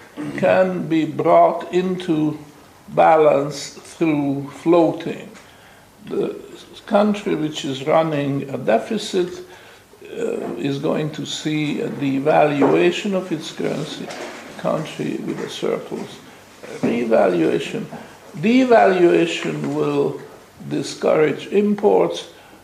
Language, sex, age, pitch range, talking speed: English, male, 60-79, 145-195 Hz, 90 wpm